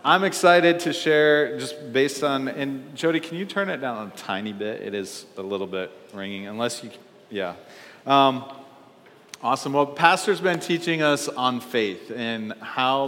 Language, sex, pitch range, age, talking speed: English, male, 110-140 Hz, 40-59, 175 wpm